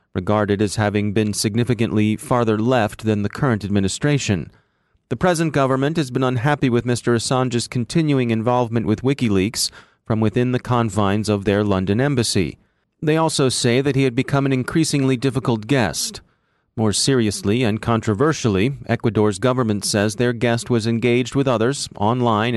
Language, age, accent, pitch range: English, 40-59, American, 105-130 Hz